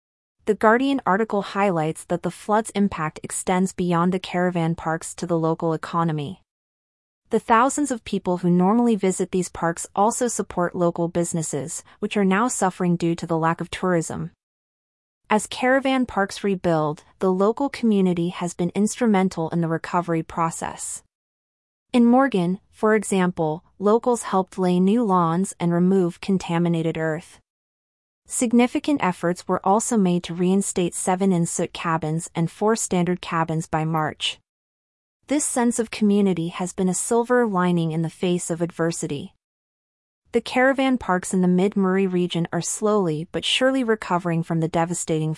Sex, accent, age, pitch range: female, American, 30-49, 170-210 Hz